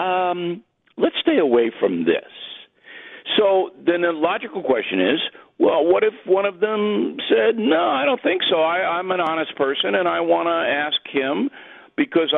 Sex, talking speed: male, 170 wpm